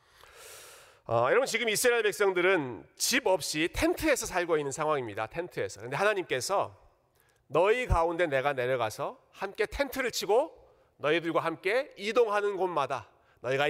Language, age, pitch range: Korean, 40-59, 125-195 Hz